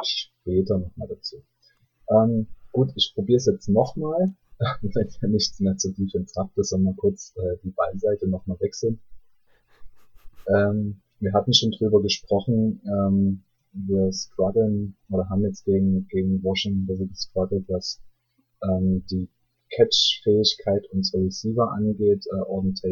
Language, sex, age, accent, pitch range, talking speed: German, male, 30-49, German, 95-105 Hz, 130 wpm